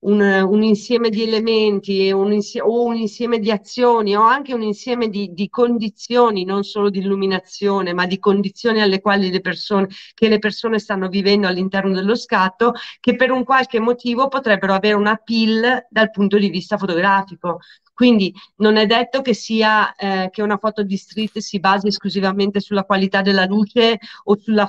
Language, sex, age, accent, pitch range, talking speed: Italian, female, 40-59, native, 185-215 Hz, 175 wpm